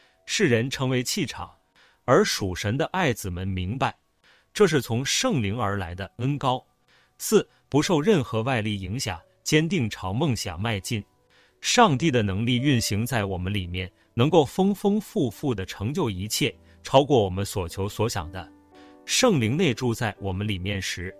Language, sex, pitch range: Chinese, male, 100-140 Hz